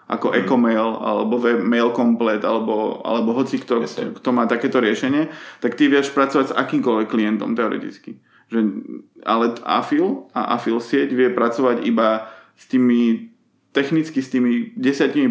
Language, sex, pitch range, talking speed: Czech, male, 115-135 Hz, 150 wpm